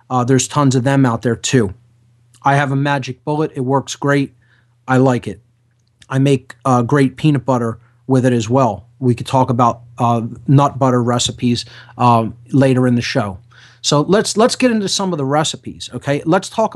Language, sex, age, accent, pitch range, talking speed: English, male, 30-49, American, 120-160 Hz, 195 wpm